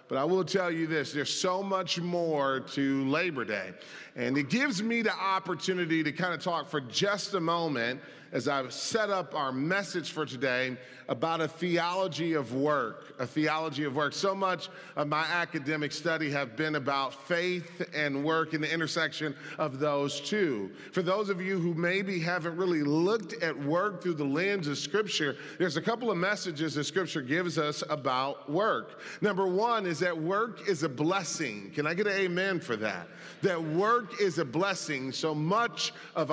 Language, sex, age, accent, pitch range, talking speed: English, male, 40-59, American, 150-195 Hz, 185 wpm